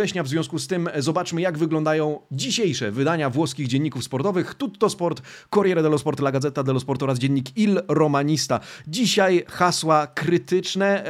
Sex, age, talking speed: male, 30-49, 150 wpm